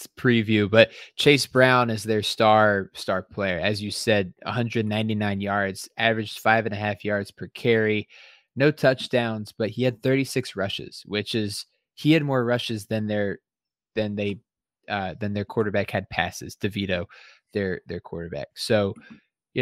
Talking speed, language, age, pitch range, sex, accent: 155 wpm, English, 20-39, 105-125 Hz, male, American